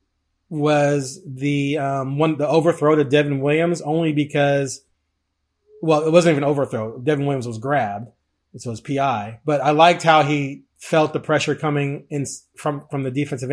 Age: 30-49